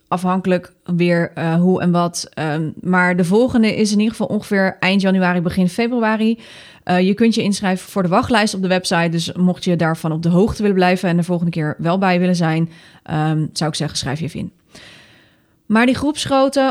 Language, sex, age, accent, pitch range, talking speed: Dutch, female, 20-39, Dutch, 180-235 Hz, 200 wpm